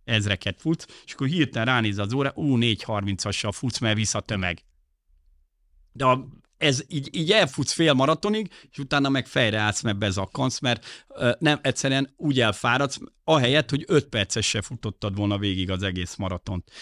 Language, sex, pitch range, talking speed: Hungarian, male, 105-135 Hz, 160 wpm